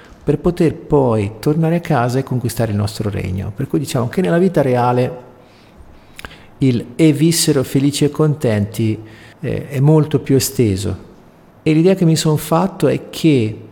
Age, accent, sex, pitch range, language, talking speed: 50-69, native, male, 110-150 Hz, Italian, 160 wpm